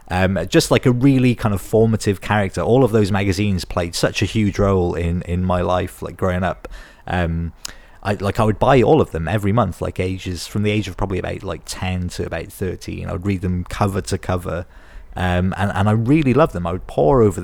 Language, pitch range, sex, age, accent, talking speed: English, 85-105 Hz, male, 30-49, British, 225 wpm